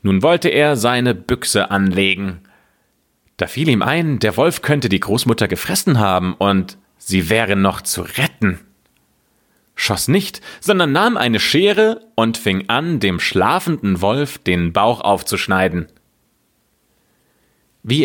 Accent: German